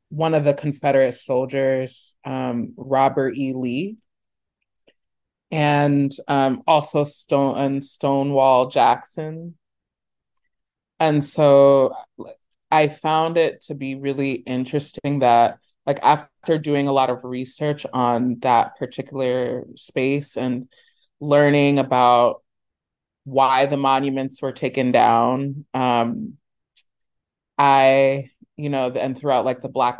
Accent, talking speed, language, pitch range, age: American, 110 wpm, English, 130-145 Hz, 20-39